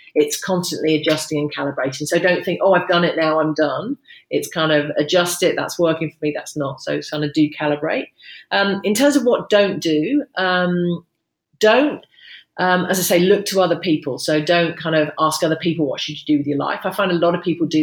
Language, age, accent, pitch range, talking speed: English, 40-59, British, 150-180 Hz, 235 wpm